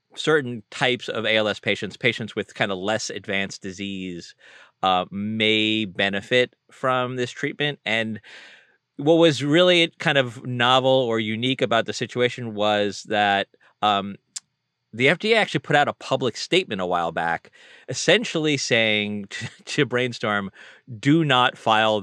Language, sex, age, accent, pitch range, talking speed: English, male, 30-49, American, 100-130 Hz, 140 wpm